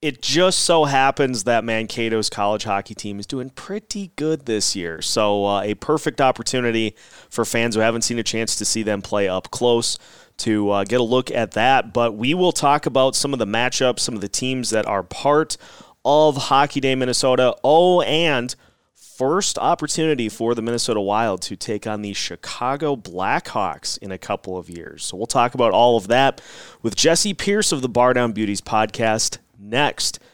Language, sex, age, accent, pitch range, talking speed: English, male, 30-49, American, 110-155 Hz, 190 wpm